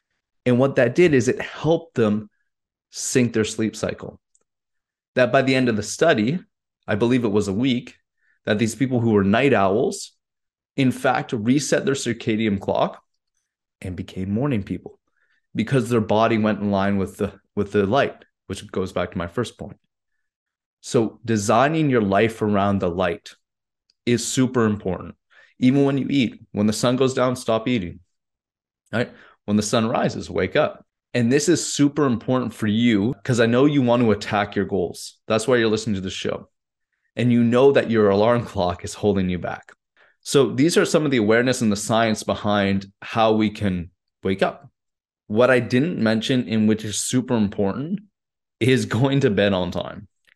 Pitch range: 100-125 Hz